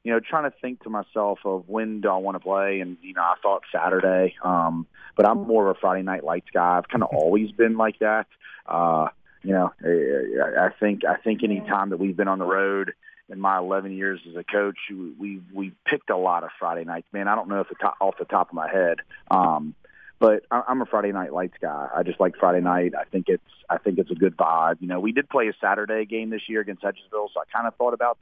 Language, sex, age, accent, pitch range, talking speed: English, male, 30-49, American, 95-105 Hz, 255 wpm